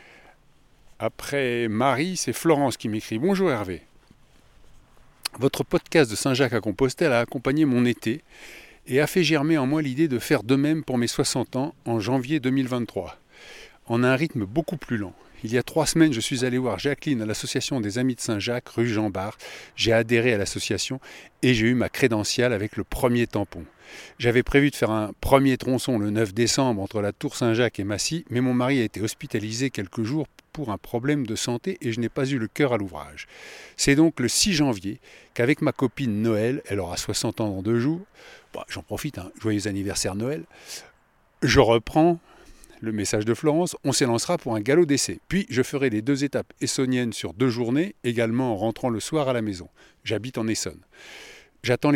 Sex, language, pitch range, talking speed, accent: male, French, 110-140 Hz, 195 wpm, French